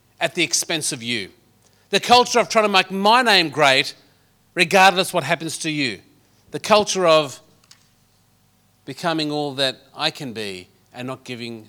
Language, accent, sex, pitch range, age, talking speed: English, Australian, male, 130-205 Hz, 40-59, 165 wpm